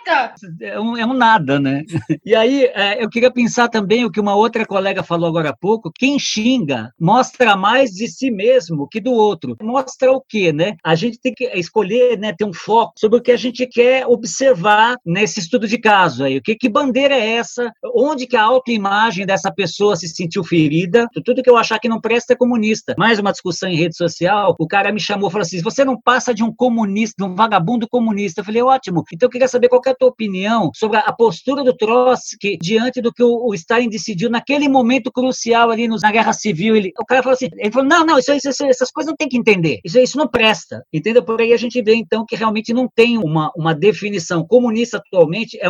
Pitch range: 190-250 Hz